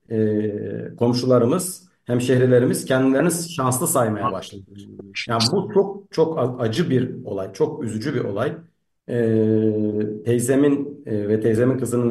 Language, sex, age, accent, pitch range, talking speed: Turkish, male, 50-69, native, 110-135 Hz, 110 wpm